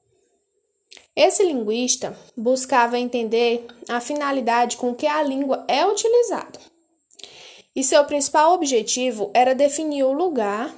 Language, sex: Portuguese, female